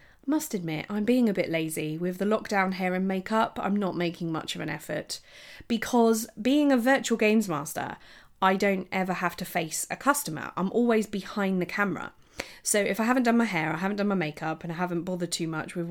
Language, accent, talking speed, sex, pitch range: English, British, 220 wpm, female, 165-225 Hz